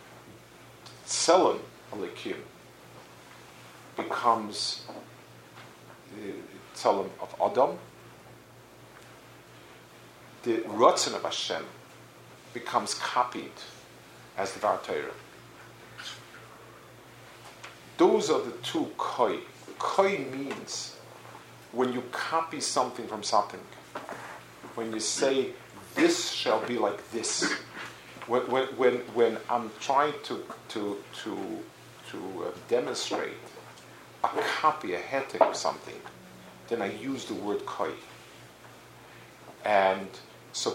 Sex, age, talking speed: male, 50-69, 90 wpm